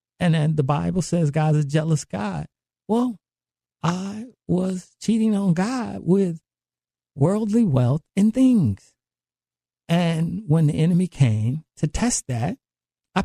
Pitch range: 130-190 Hz